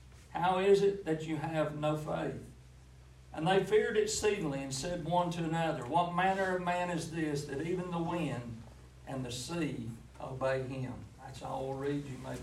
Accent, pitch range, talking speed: American, 135-165 Hz, 185 wpm